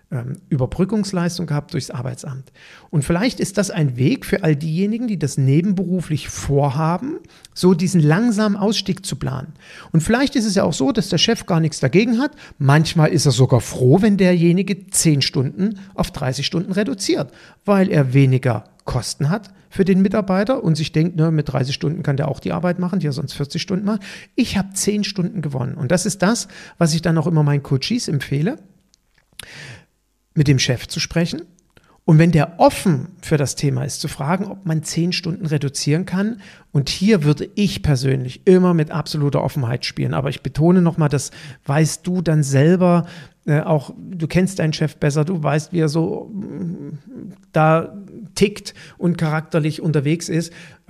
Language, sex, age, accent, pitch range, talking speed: German, male, 50-69, German, 145-185 Hz, 180 wpm